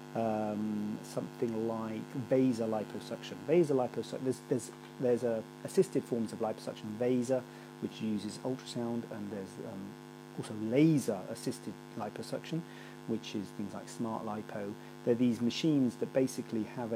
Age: 40-59